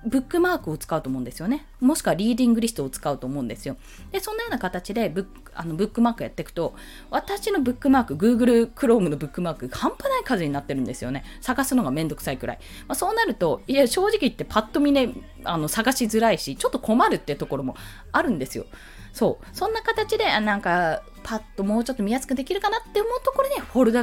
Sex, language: female, Japanese